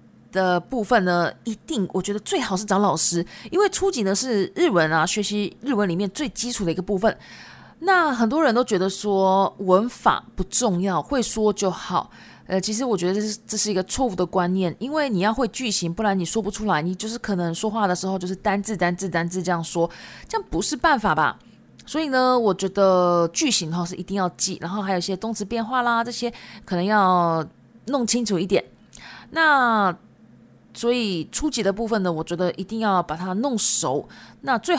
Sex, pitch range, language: female, 185-245 Hz, Chinese